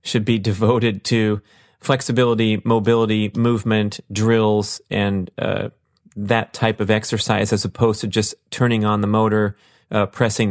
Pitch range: 105-120 Hz